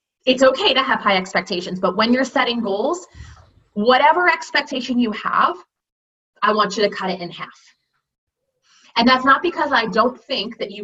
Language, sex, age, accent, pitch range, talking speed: English, female, 20-39, American, 200-255 Hz, 175 wpm